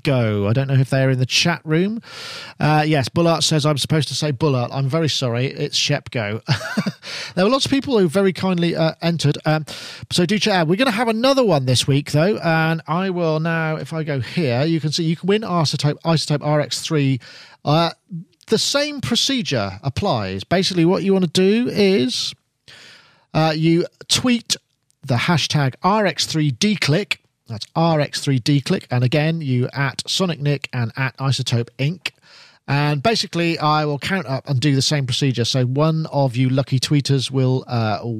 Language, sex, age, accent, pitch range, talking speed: English, male, 40-59, British, 125-170 Hz, 175 wpm